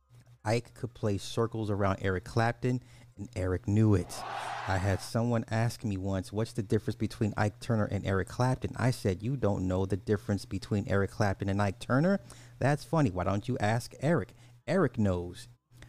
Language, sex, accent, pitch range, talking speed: English, male, American, 100-120 Hz, 180 wpm